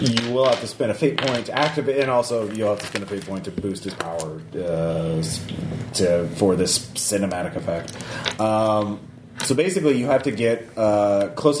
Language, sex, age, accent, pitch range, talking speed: English, male, 30-49, American, 100-125 Hz, 195 wpm